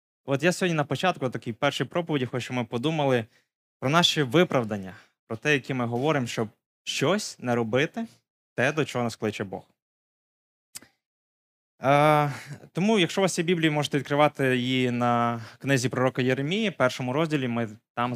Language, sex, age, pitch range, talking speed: Ukrainian, male, 20-39, 115-150 Hz, 160 wpm